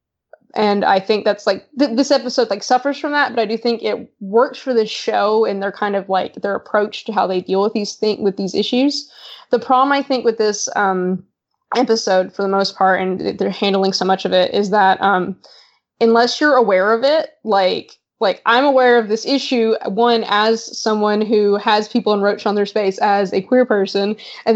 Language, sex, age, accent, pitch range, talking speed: English, female, 20-39, American, 195-235 Hz, 210 wpm